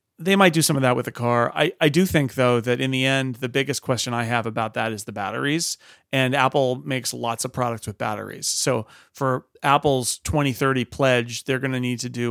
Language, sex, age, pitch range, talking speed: English, male, 30-49, 115-135 Hz, 230 wpm